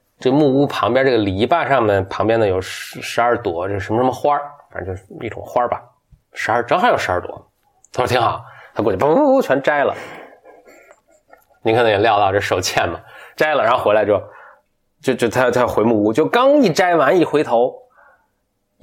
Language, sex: Chinese, male